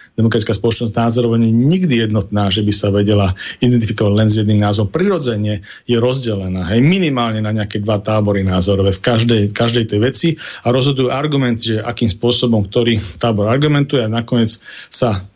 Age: 40-59